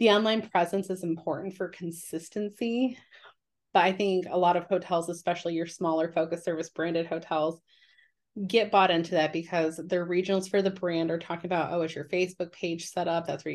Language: English